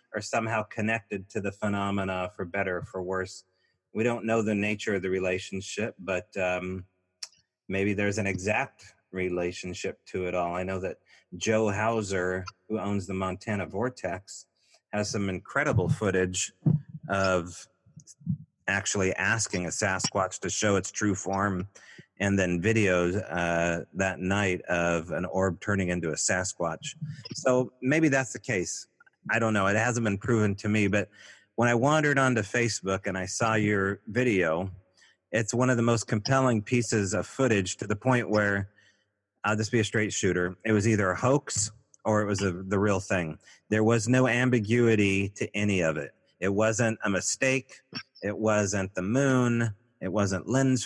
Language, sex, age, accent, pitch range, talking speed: English, male, 30-49, American, 95-115 Hz, 165 wpm